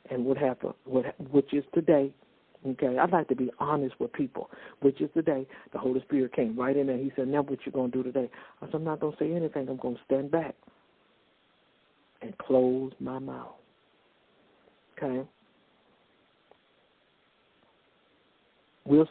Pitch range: 135-155 Hz